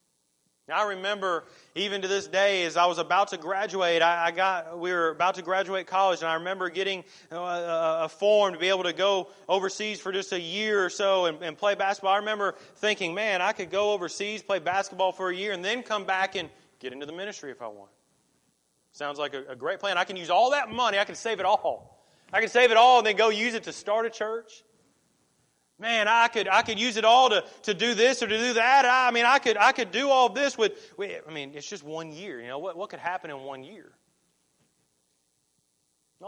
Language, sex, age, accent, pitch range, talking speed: English, male, 30-49, American, 160-215 Hz, 240 wpm